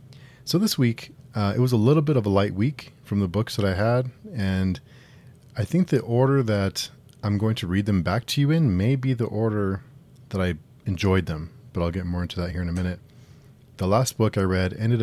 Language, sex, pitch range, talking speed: English, male, 90-130 Hz, 230 wpm